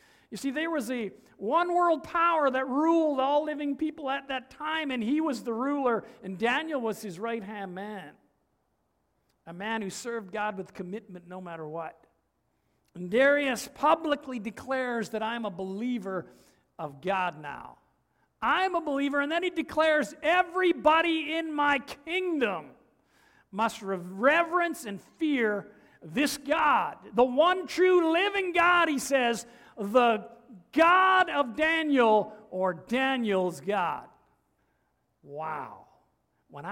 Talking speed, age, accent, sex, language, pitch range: 130 wpm, 50-69, American, male, English, 190-300 Hz